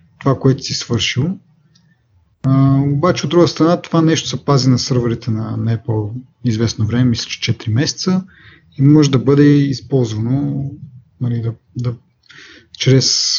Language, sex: Bulgarian, male